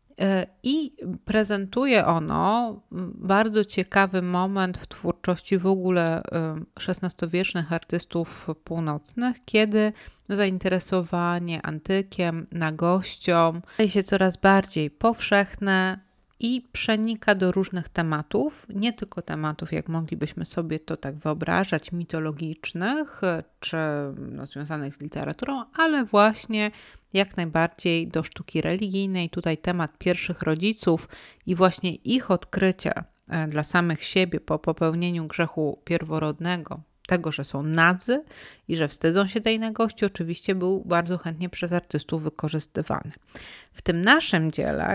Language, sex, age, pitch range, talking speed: Polish, female, 30-49, 160-195 Hz, 115 wpm